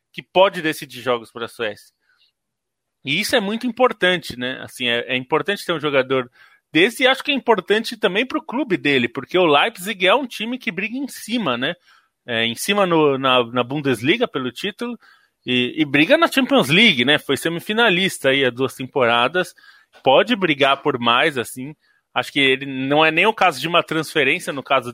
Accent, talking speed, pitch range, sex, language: Brazilian, 190 wpm, 130-190 Hz, male, Portuguese